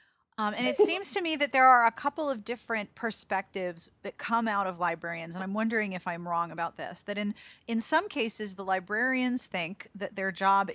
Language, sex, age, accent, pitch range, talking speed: English, female, 30-49, American, 185-230 Hz, 210 wpm